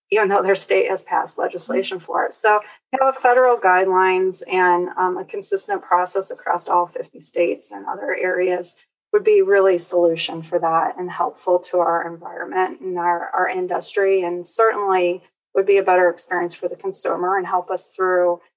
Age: 30-49